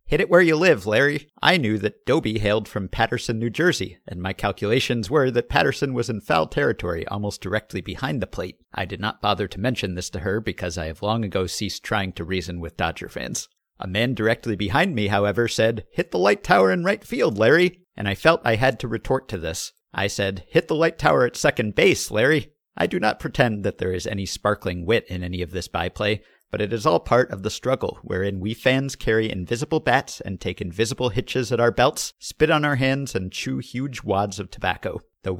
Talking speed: 225 wpm